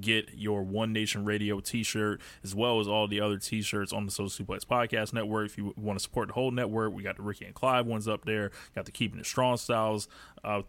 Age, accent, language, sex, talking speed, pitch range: 20-39, American, English, male, 240 wpm, 100-110 Hz